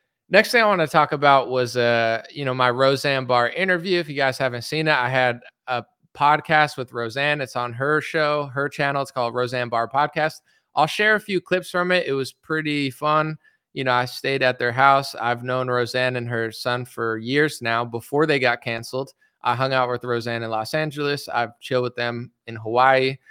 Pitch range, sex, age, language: 125-155 Hz, male, 20-39, English